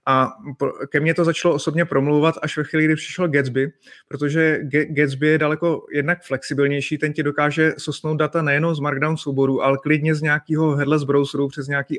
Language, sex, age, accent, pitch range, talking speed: Czech, male, 30-49, native, 140-160 Hz, 180 wpm